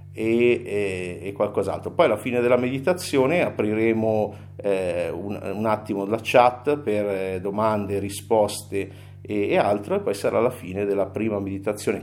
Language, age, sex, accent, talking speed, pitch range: Italian, 50-69, male, native, 155 wpm, 100-130 Hz